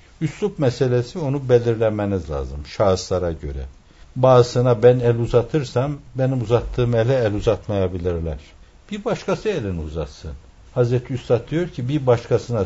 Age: 60-79